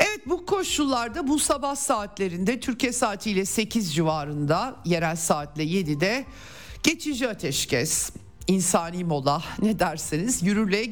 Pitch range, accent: 165-235 Hz, native